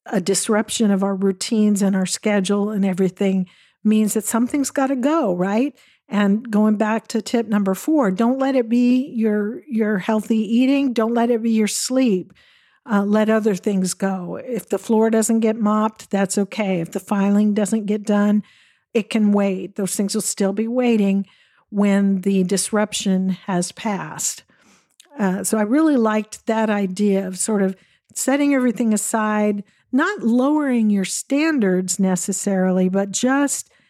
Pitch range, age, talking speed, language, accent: 195-230 Hz, 50-69, 160 wpm, English, American